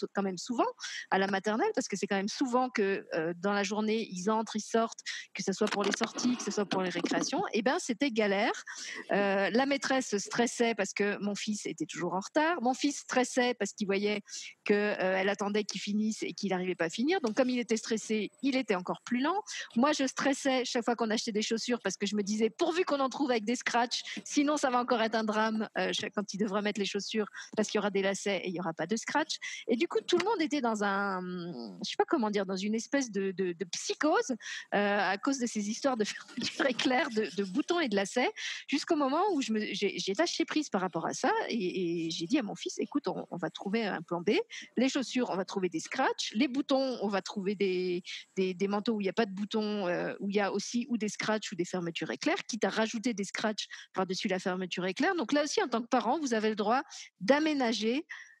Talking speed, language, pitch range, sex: 250 wpm, French, 200-265 Hz, female